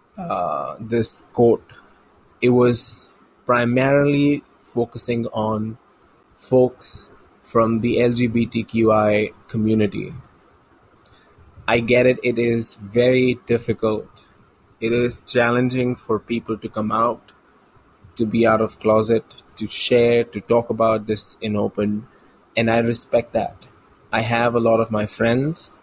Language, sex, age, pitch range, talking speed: English, male, 20-39, 110-125 Hz, 120 wpm